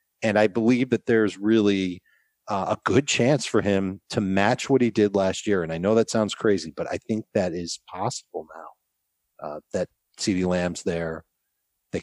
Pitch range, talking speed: 95-120 Hz, 190 wpm